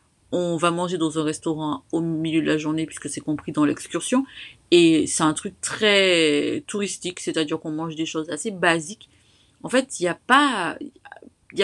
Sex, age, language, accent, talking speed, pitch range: female, 30-49, French, French, 170 wpm, 160-205 Hz